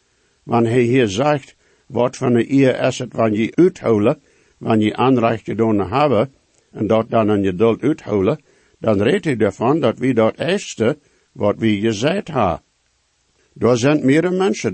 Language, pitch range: English, 110-145 Hz